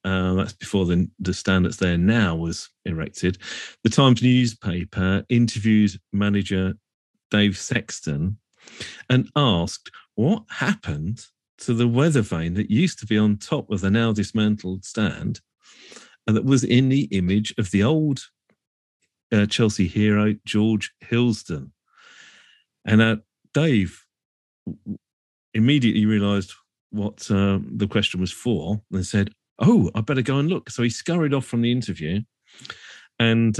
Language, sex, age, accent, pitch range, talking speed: English, male, 40-59, British, 95-110 Hz, 140 wpm